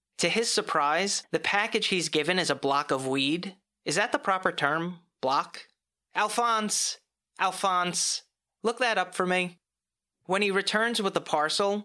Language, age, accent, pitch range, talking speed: English, 30-49, American, 145-180 Hz, 155 wpm